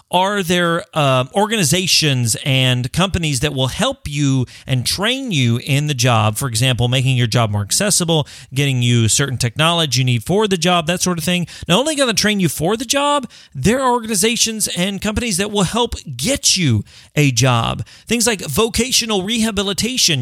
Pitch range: 135-205 Hz